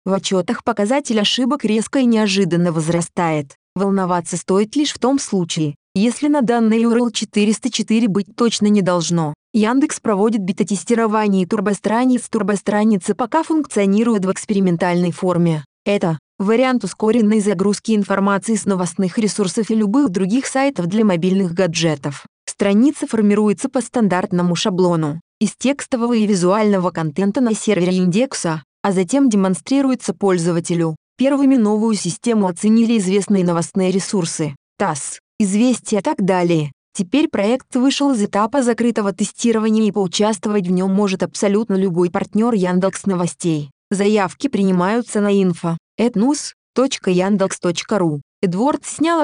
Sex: female